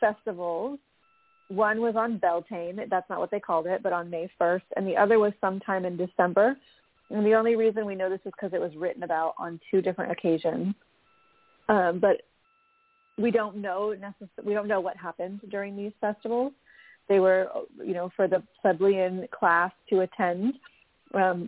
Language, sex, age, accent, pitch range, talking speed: English, female, 30-49, American, 185-230 Hz, 180 wpm